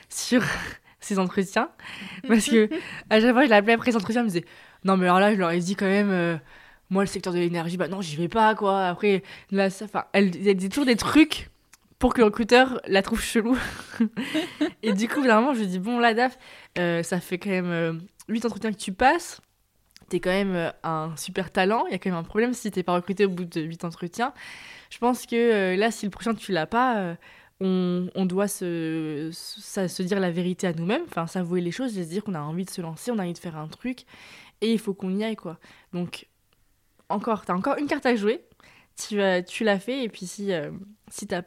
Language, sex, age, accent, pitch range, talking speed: French, female, 20-39, French, 180-225 Hz, 240 wpm